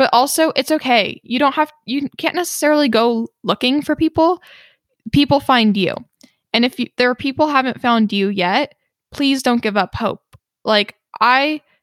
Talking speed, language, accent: 165 wpm, English, American